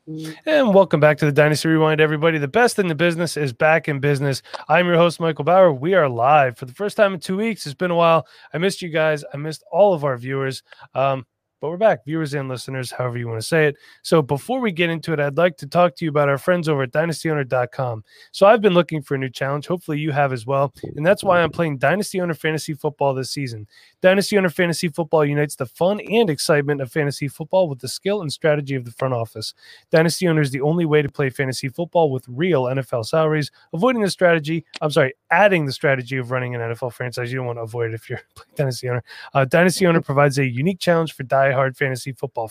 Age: 20-39